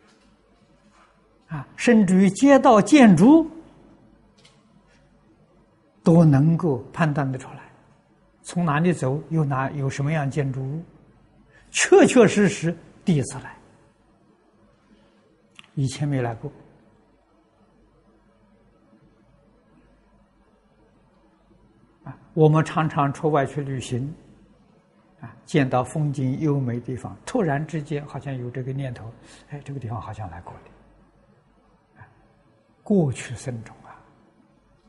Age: 60-79